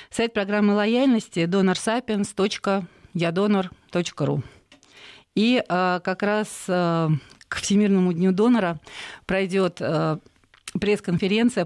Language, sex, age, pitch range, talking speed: Russian, female, 40-59, 165-195 Hz, 70 wpm